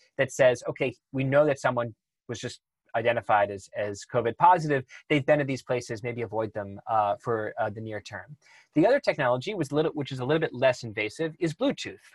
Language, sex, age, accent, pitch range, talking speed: English, male, 20-39, American, 125-165 Hz, 205 wpm